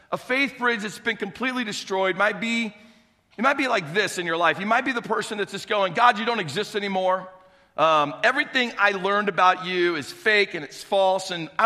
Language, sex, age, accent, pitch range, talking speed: English, male, 40-59, American, 175-230 Hz, 220 wpm